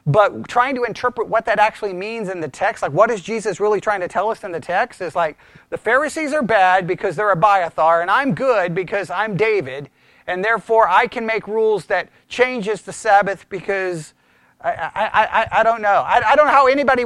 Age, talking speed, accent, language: 40-59, 220 wpm, American, English